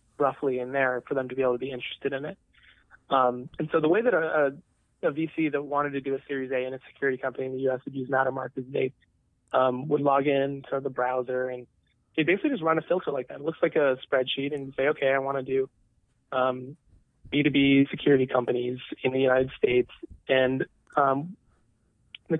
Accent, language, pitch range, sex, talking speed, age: American, English, 130-150 Hz, male, 215 wpm, 20-39